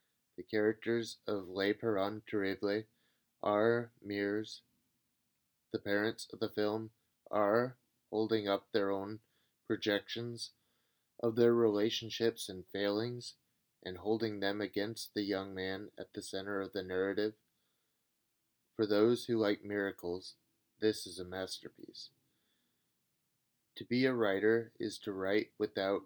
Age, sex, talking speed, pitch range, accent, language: 30-49, male, 125 wpm, 100-115 Hz, American, English